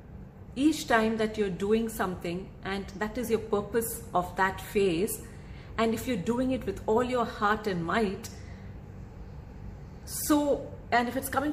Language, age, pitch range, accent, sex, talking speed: English, 30-49, 175-245 Hz, Indian, female, 155 wpm